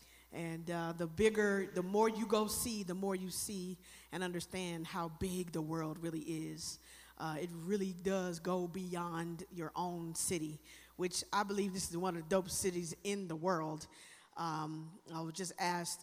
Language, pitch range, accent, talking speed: English, 170-200 Hz, American, 180 wpm